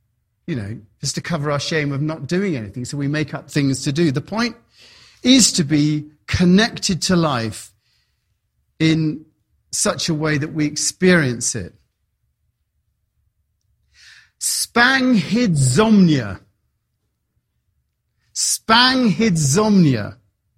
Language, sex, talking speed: English, male, 105 wpm